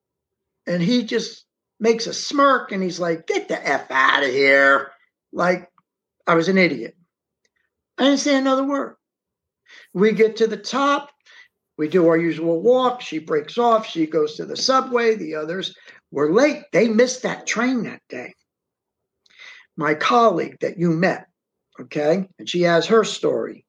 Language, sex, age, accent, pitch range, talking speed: English, male, 60-79, American, 180-255 Hz, 160 wpm